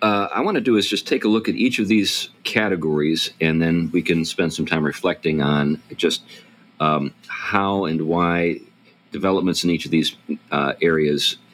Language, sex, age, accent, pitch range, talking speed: English, male, 50-69, American, 80-95 Hz, 185 wpm